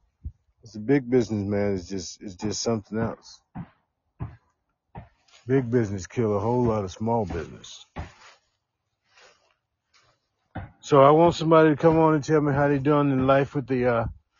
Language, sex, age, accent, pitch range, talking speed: English, male, 50-69, American, 105-140 Hz, 155 wpm